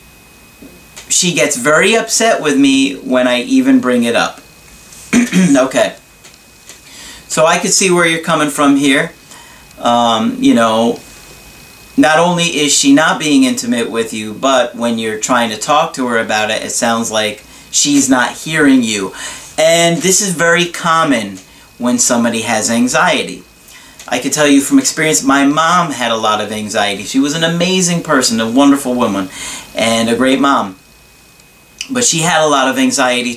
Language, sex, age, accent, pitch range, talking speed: English, male, 40-59, American, 120-165 Hz, 165 wpm